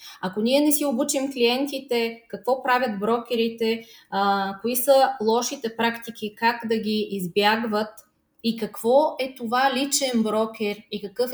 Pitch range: 220-270 Hz